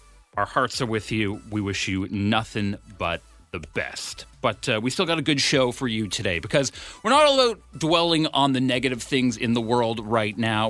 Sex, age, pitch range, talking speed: male, 30-49, 100-145 Hz, 215 wpm